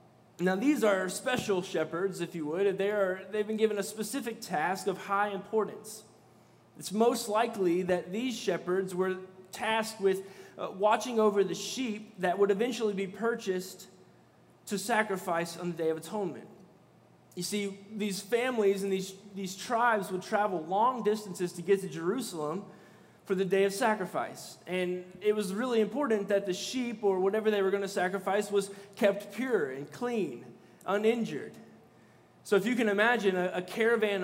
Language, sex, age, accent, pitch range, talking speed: English, male, 20-39, American, 185-220 Hz, 165 wpm